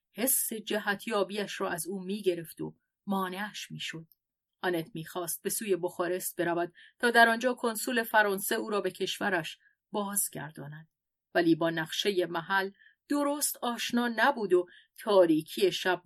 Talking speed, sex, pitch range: 135 wpm, female, 170-210 Hz